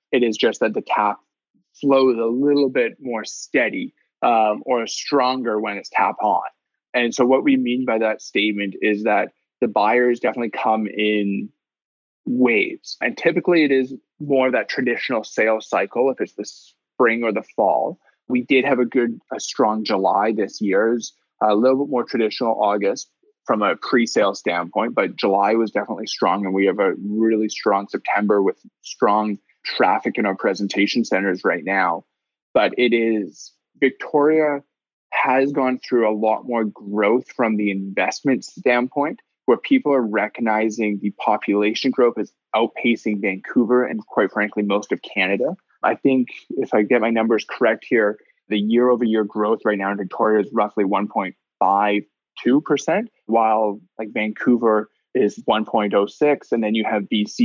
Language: English